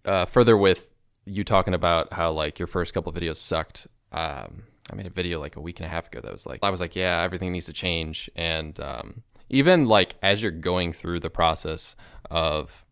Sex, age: male, 20-39